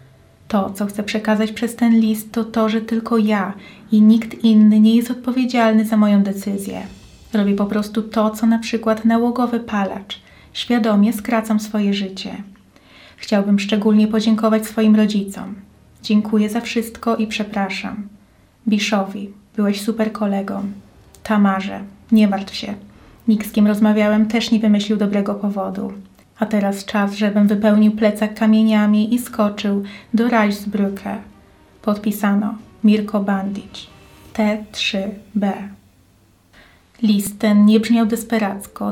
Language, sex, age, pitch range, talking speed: Polish, female, 20-39, 205-220 Hz, 125 wpm